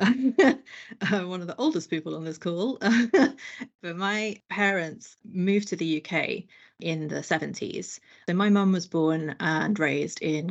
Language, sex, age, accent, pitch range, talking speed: English, female, 30-49, British, 170-205 Hz, 155 wpm